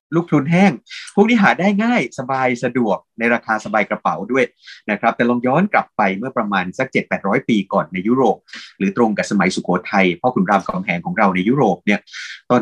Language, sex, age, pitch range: Thai, male, 30-49, 105-150 Hz